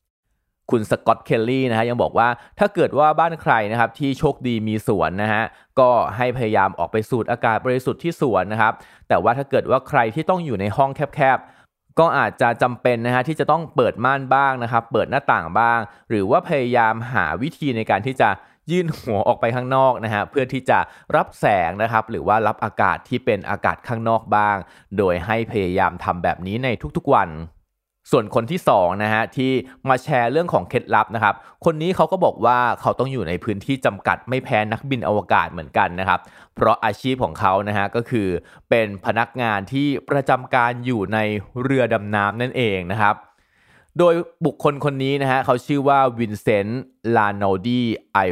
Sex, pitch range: male, 105-135 Hz